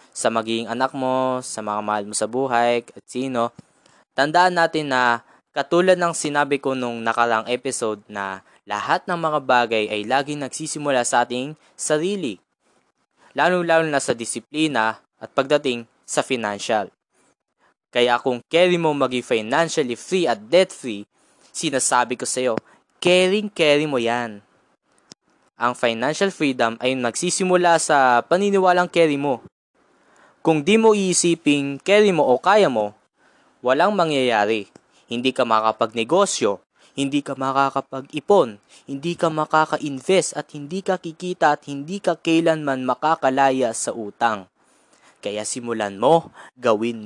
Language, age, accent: English, 20-39, Filipino